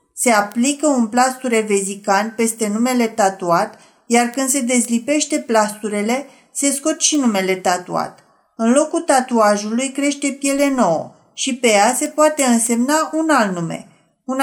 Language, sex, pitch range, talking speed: Romanian, female, 220-275 Hz, 140 wpm